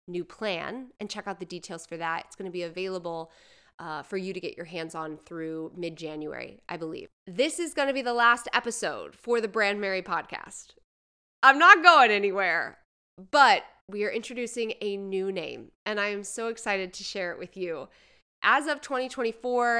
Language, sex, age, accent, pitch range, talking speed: English, female, 20-39, American, 185-240 Hz, 190 wpm